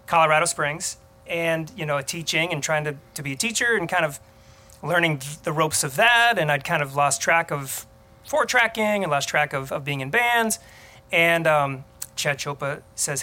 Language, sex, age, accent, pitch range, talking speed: English, male, 30-49, American, 140-175 Hz, 205 wpm